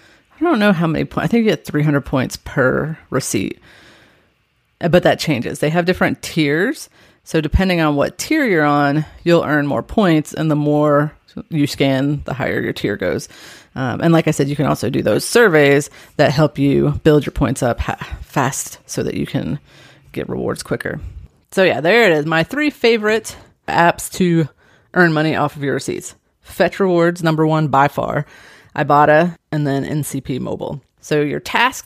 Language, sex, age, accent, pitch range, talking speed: English, female, 30-49, American, 145-170 Hz, 185 wpm